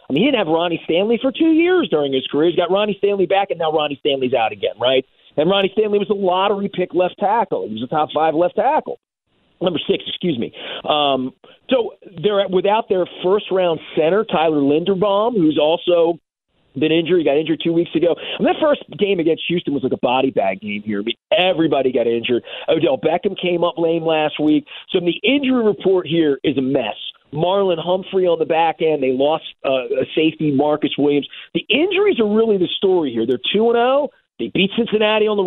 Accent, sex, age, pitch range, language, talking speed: American, male, 40-59, 155-200 Hz, English, 210 wpm